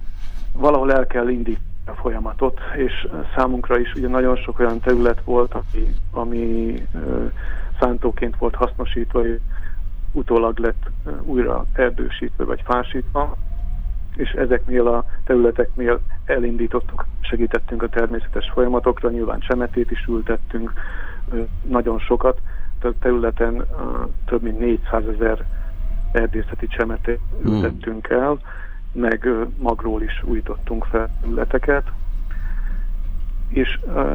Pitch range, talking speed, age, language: 85-120 Hz, 105 wpm, 50-69, Hungarian